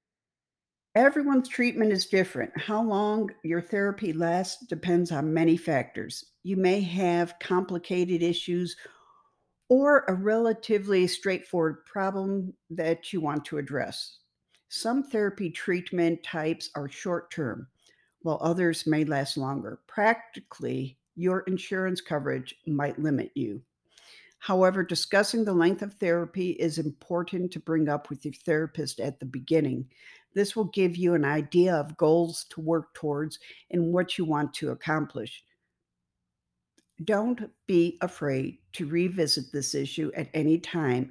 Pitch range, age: 150-185 Hz, 50-69